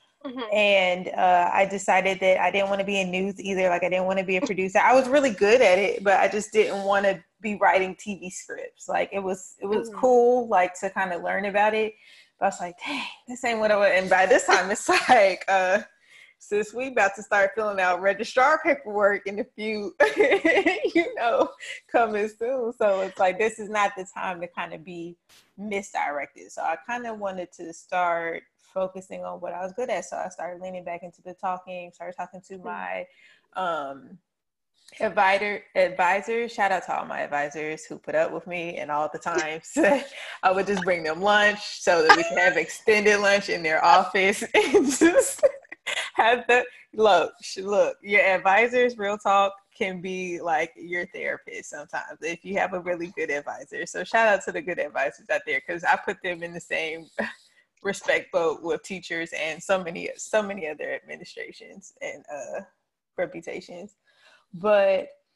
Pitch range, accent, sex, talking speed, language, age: 185-240 Hz, American, female, 190 wpm, English, 20-39